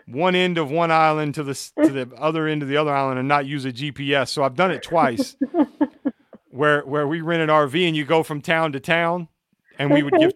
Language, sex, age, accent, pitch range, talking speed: English, male, 40-59, American, 140-165 Hz, 245 wpm